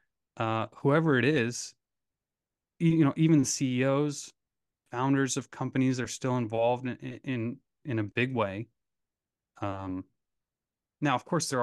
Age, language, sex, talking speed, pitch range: 20-39, English, male, 130 wpm, 110-135 Hz